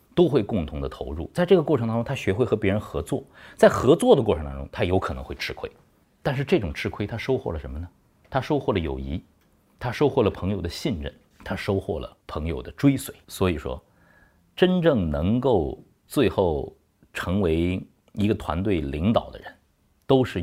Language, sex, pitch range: Chinese, male, 85-125 Hz